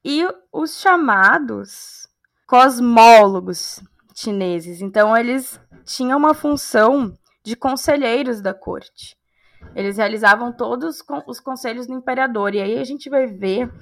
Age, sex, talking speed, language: 10-29, female, 115 wpm, Portuguese